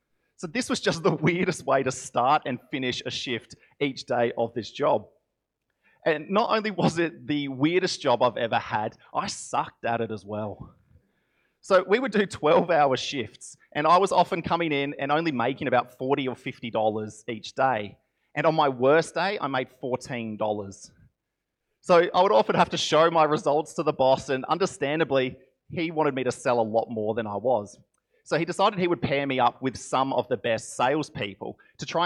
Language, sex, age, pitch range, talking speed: English, male, 30-49, 120-155 Hz, 195 wpm